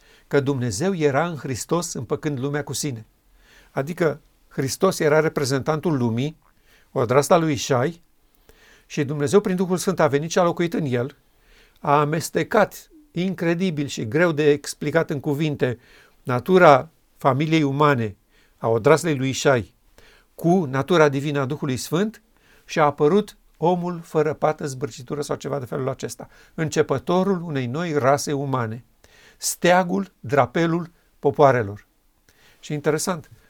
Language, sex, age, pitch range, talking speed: Romanian, male, 50-69, 140-165 Hz, 130 wpm